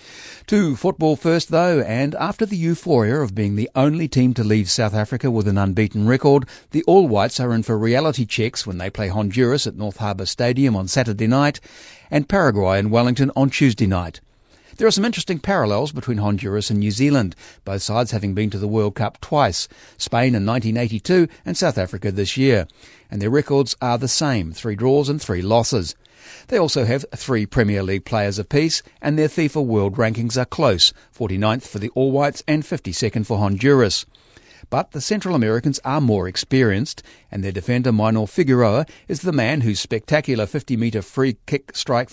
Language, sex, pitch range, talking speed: English, male, 105-145 Hz, 185 wpm